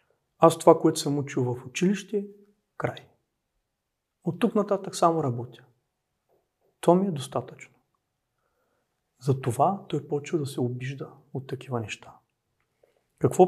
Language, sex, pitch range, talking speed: Bulgarian, male, 125-175 Hz, 125 wpm